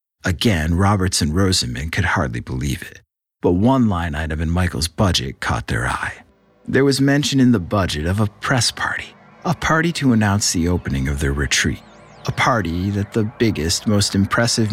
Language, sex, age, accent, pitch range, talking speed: English, male, 50-69, American, 80-115 Hz, 180 wpm